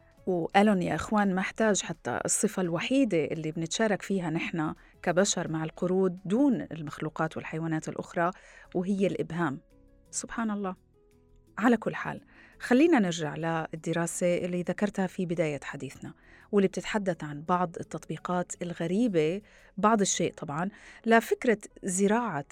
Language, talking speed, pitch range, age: Arabic, 120 wpm, 160-200 Hz, 30-49